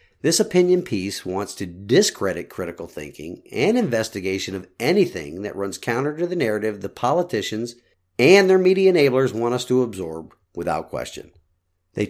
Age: 50-69